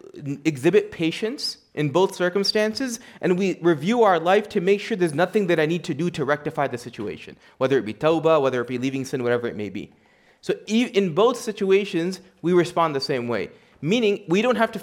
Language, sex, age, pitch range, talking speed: English, male, 30-49, 155-210 Hz, 205 wpm